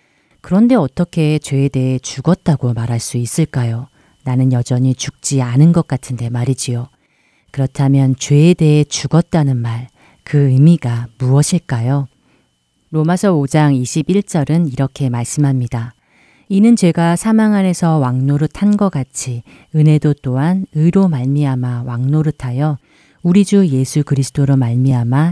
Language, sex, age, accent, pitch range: Korean, female, 40-59, native, 130-170 Hz